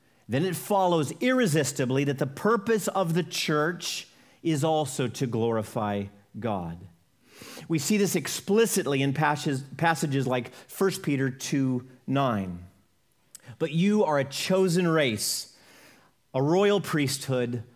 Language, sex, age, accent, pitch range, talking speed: English, male, 40-59, American, 125-180 Hz, 120 wpm